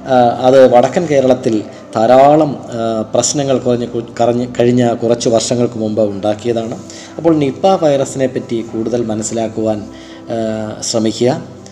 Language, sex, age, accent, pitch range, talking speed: Malayalam, male, 20-39, native, 115-140 Hz, 95 wpm